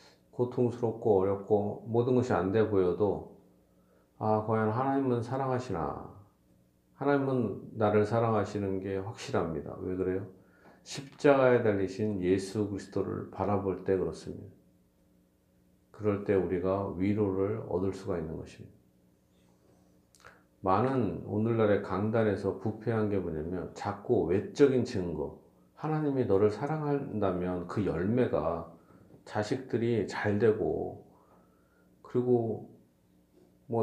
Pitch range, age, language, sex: 80-130 Hz, 40-59, Korean, male